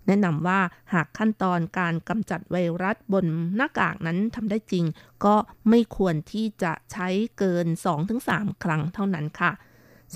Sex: female